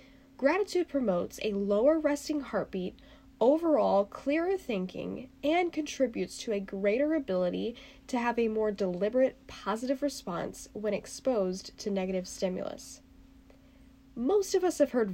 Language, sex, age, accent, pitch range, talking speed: English, female, 10-29, American, 200-285 Hz, 125 wpm